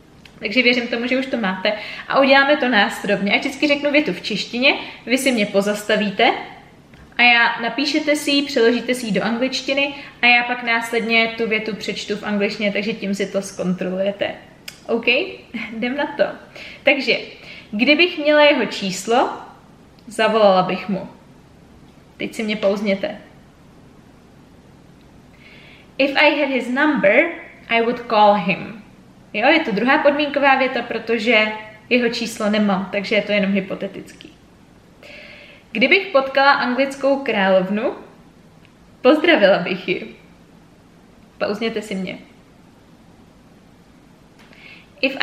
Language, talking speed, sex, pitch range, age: Czech, 130 wpm, female, 210-275 Hz, 20-39